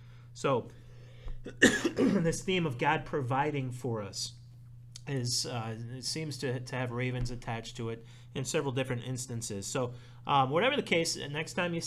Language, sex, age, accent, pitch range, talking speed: English, male, 30-49, American, 120-145 Hz, 155 wpm